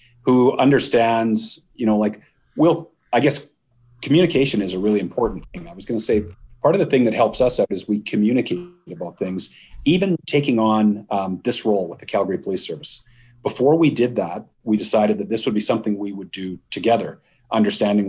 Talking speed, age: 195 wpm, 30-49